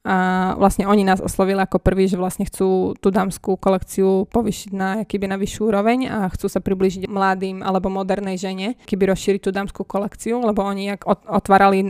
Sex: female